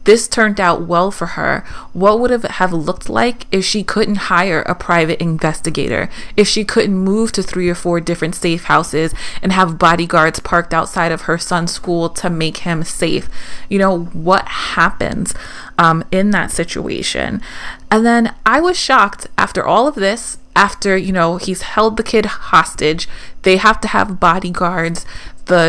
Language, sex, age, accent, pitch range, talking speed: English, female, 30-49, American, 175-220 Hz, 175 wpm